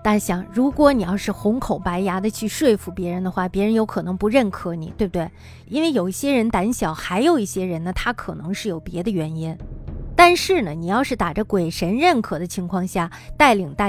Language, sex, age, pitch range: Chinese, female, 20-39, 180-235 Hz